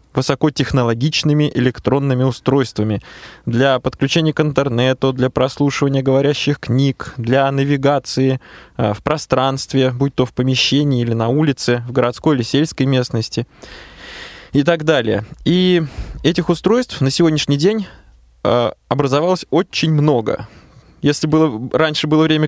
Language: Russian